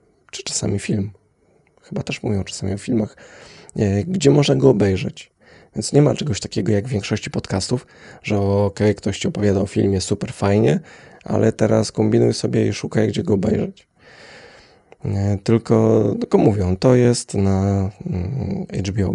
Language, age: Polish, 20-39